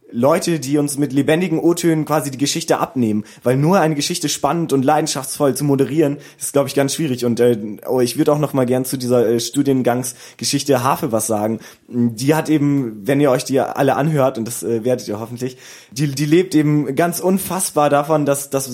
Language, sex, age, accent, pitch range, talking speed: German, male, 20-39, German, 120-150 Hz, 210 wpm